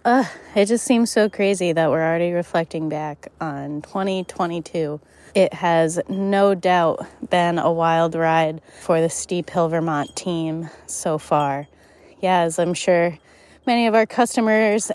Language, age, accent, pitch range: English, 20-39, American, 170-215 Hz